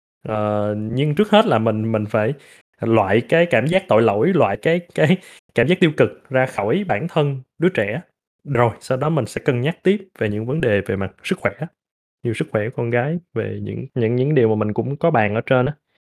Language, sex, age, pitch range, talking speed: Vietnamese, male, 20-39, 110-165 Hz, 230 wpm